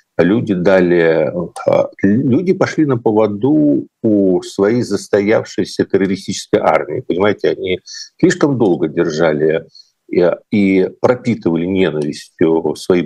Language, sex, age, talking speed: Russian, male, 50-69, 90 wpm